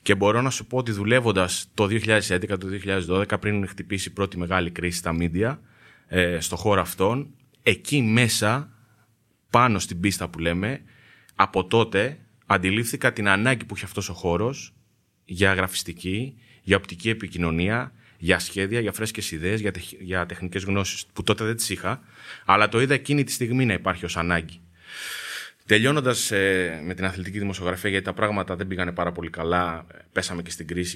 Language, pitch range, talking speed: Greek, 90-115 Hz, 165 wpm